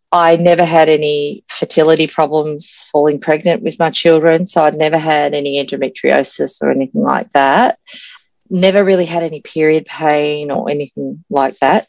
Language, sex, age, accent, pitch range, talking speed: English, female, 30-49, Australian, 155-200 Hz, 155 wpm